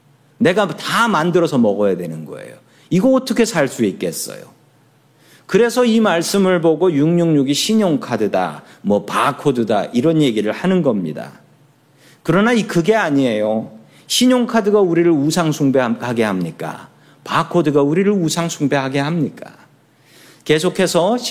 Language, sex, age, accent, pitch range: Korean, male, 40-59, native, 125-175 Hz